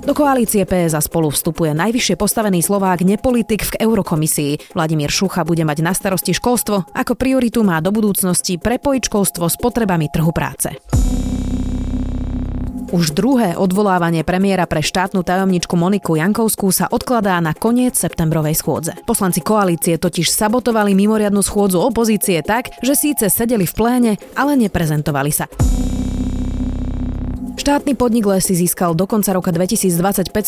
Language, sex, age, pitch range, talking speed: Slovak, female, 30-49, 165-220 Hz, 130 wpm